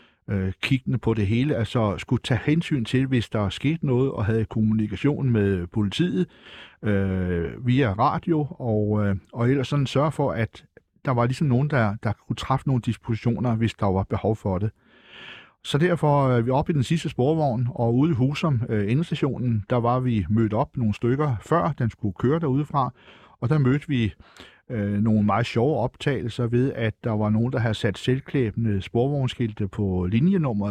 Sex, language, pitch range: male, Danish, 105-135 Hz